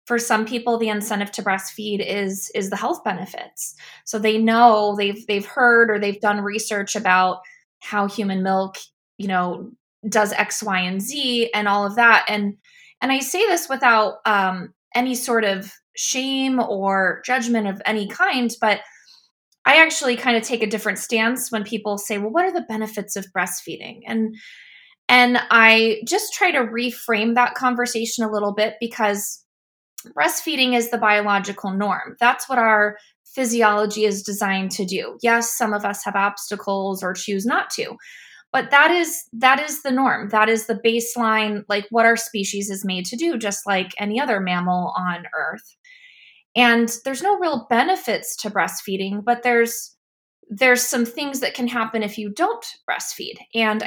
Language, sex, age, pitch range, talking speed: English, female, 20-39, 205-250 Hz, 170 wpm